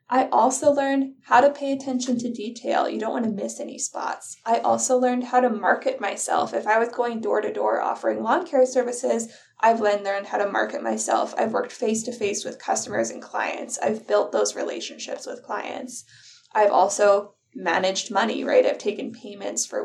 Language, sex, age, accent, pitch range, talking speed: English, female, 20-39, American, 215-270 Hz, 180 wpm